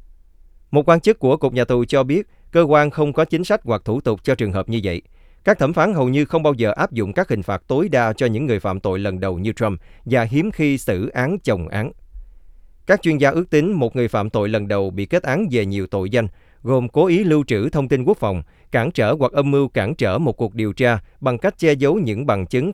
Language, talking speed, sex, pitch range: Vietnamese, 260 wpm, male, 95-140 Hz